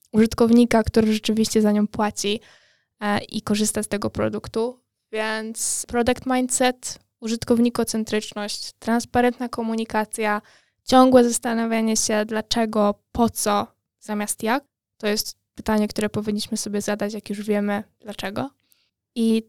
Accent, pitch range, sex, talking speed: native, 215-230 Hz, female, 115 wpm